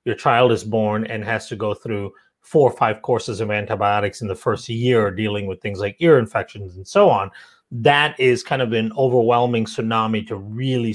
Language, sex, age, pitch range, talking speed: English, male, 30-49, 110-135 Hz, 205 wpm